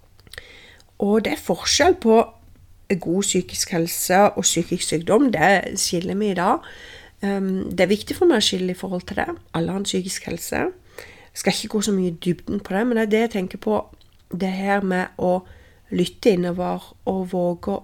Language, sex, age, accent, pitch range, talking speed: English, female, 40-59, Swedish, 185-245 Hz, 180 wpm